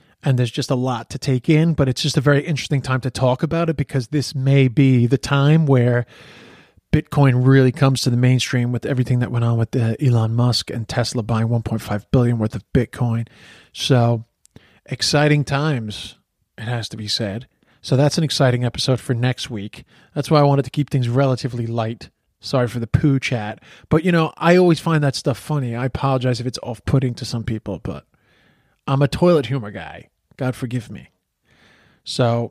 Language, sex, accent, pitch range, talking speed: English, male, American, 120-140 Hz, 195 wpm